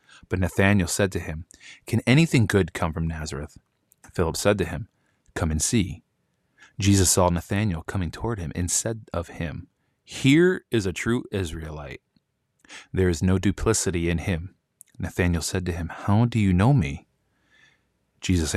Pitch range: 85-110 Hz